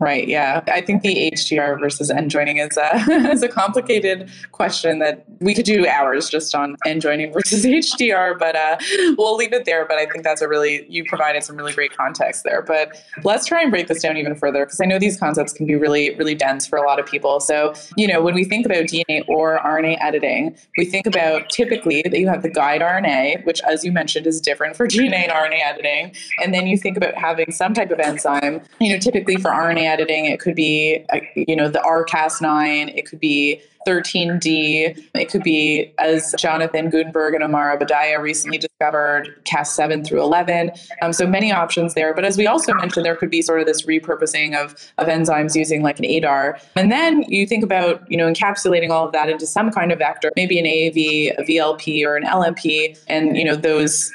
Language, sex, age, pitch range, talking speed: English, female, 20-39, 150-185 Hz, 215 wpm